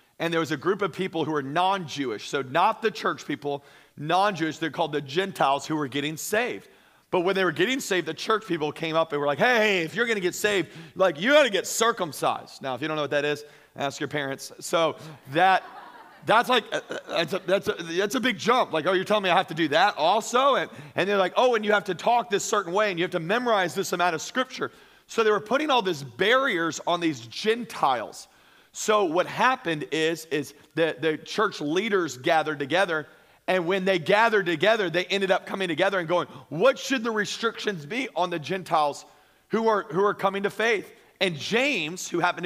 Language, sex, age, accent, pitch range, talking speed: English, male, 40-59, American, 160-210 Hz, 225 wpm